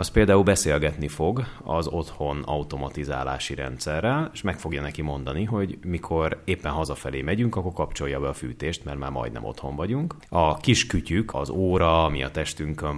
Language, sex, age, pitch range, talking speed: Hungarian, male, 30-49, 70-90 Hz, 160 wpm